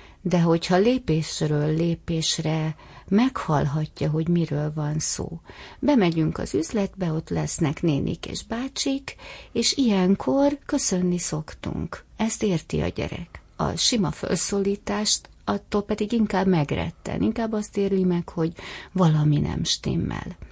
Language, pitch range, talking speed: Hungarian, 160-200 Hz, 115 wpm